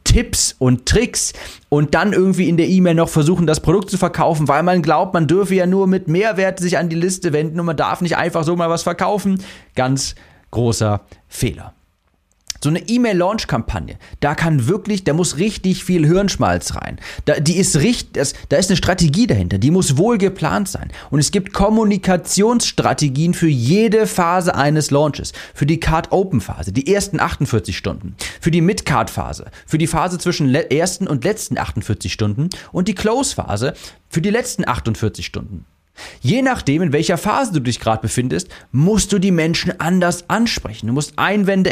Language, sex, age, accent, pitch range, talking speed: German, male, 30-49, German, 125-180 Hz, 170 wpm